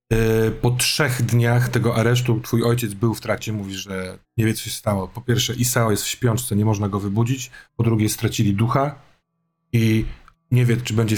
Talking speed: 195 wpm